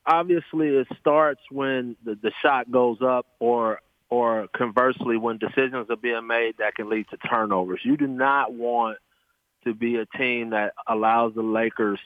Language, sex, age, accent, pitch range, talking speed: English, male, 30-49, American, 110-130 Hz, 170 wpm